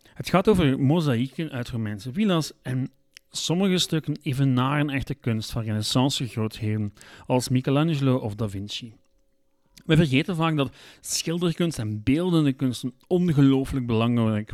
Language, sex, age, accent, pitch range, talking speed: Dutch, male, 40-59, Dutch, 120-160 Hz, 130 wpm